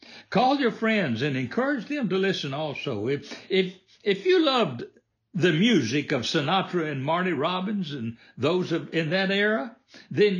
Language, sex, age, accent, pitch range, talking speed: English, male, 60-79, American, 135-205 Hz, 160 wpm